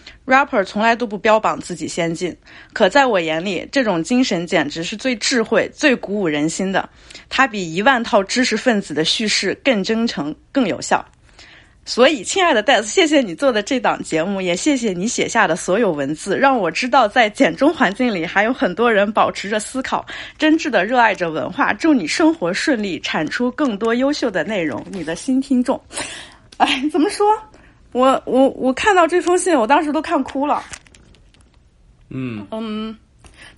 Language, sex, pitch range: Chinese, female, 200-275 Hz